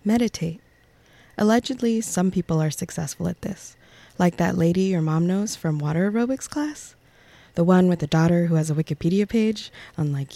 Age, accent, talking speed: 20-39, American, 170 wpm